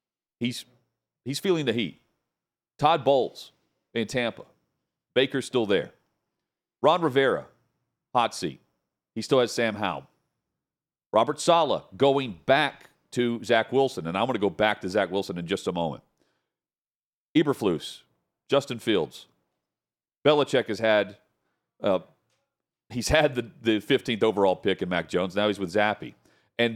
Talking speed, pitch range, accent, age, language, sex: 140 wpm, 100-130 Hz, American, 40-59, English, male